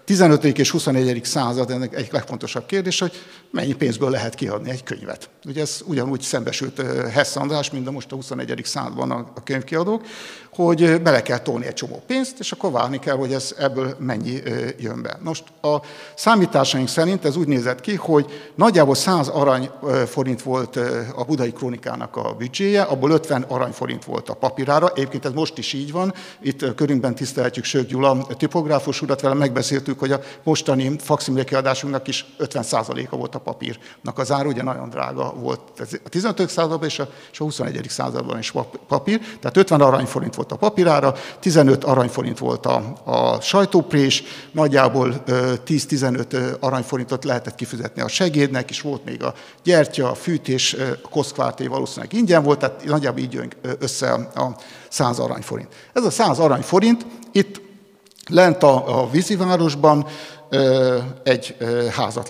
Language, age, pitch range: Hungarian, 60-79, 130-160 Hz